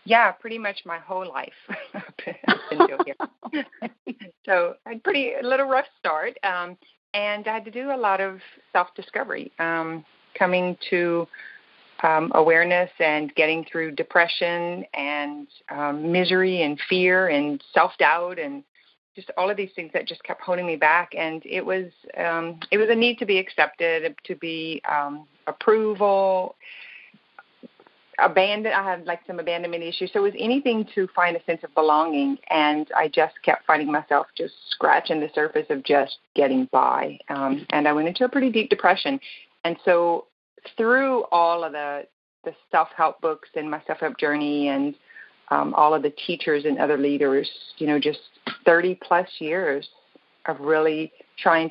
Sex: female